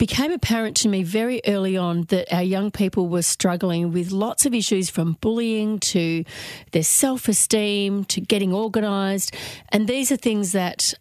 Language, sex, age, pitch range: English, female, 40-59, 170-210 Hz